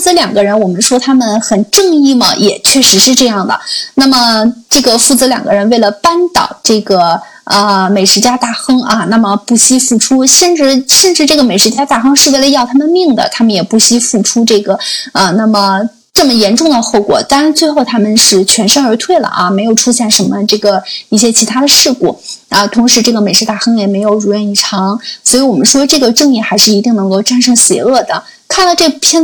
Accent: native